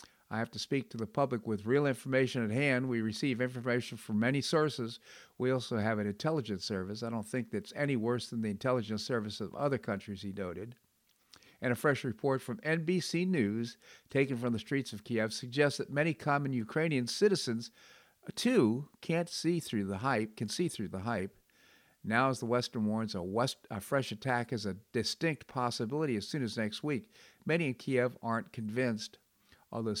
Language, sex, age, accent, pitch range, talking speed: English, male, 50-69, American, 110-130 Hz, 185 wpm